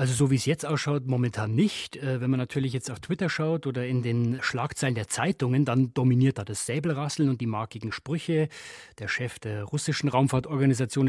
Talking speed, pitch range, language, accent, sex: 190 wpm, 120-145 Hz, German, German, male